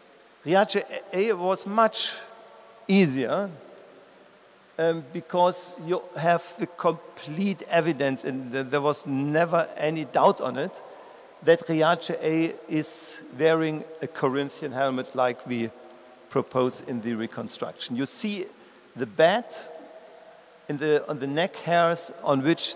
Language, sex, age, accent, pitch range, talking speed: Italian, male, 50-69, German, 140-190 Hz, 125 wpm